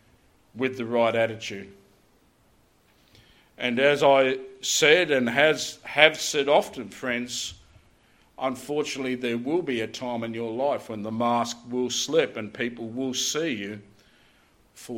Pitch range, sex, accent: 115-140 Hz, male, Australian